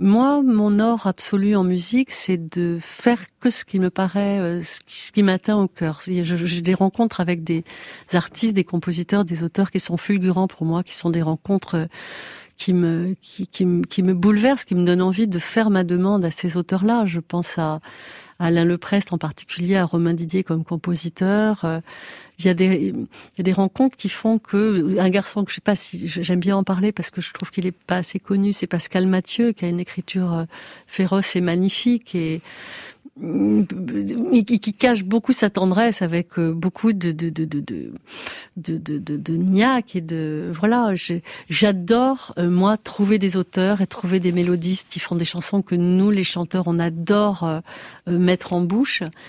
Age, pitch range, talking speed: 40-59, 175-205 Hz, 185 wpm